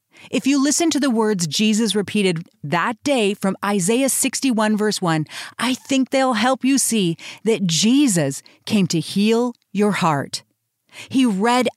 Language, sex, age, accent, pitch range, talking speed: English, female, 40-59, American, 195-255 Hz, 155 wpm